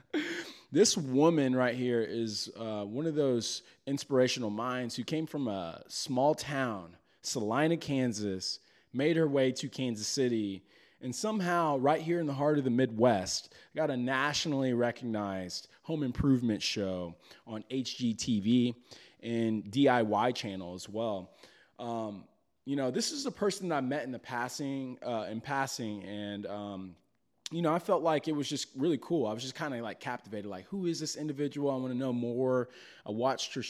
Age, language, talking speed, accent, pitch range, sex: 20-39, English, 175 wpm, American, 110-140 Hz, male